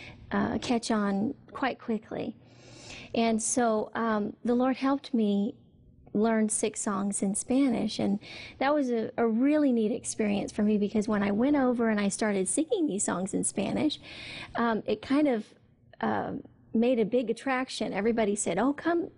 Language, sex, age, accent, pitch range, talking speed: English, female, 40-59, American, 215-260 Hz, 165 wpm